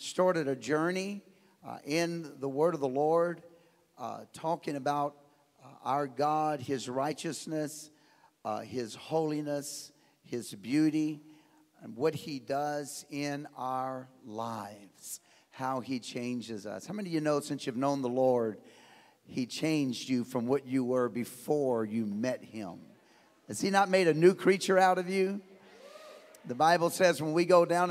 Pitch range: 140-175 Hz